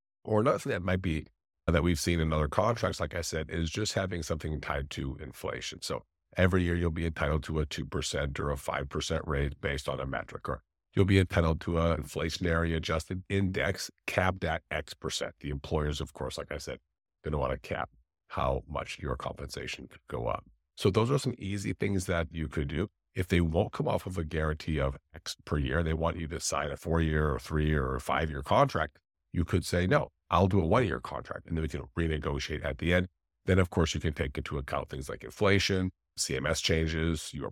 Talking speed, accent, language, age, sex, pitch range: 220 wpm, American, English, 50-69, male, 75-90 Hz